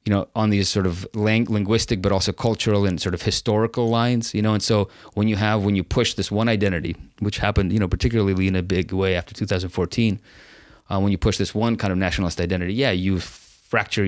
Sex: male